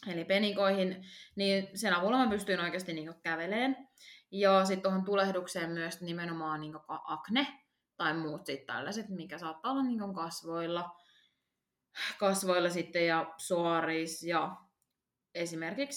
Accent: native